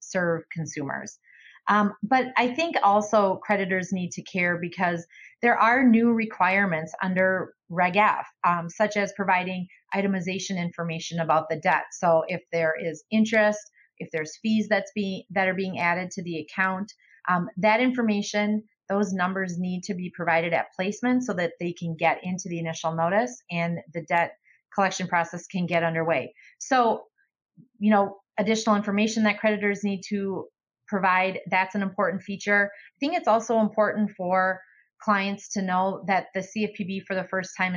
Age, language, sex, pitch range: 30-49, English, female, 175-210 Hz